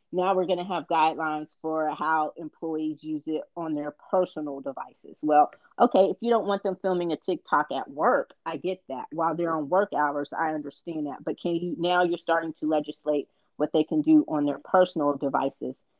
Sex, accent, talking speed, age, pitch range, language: female, American, 205 wpm, 40-59, 155-195 Hz, English